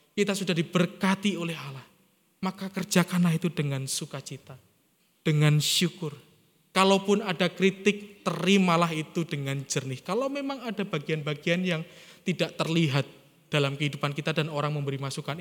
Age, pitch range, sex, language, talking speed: 20-39, 145-185 Hz, male, Indonesian, 130 wpm